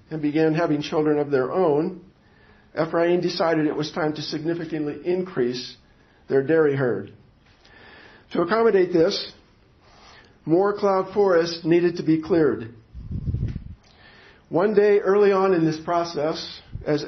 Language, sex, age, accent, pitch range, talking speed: English, male, 50-69, American, 145-180 Hz, 125 wpm